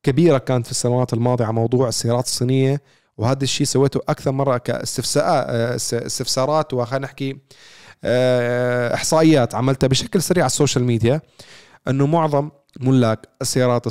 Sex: male